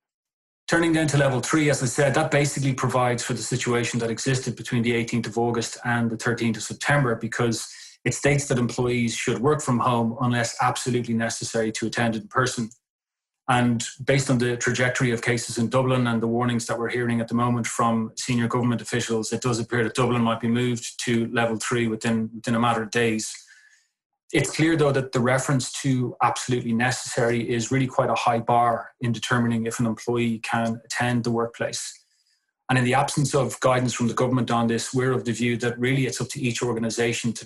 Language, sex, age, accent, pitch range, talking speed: English, male, 30-49, Irish, 115-125 Hz, 205 wpm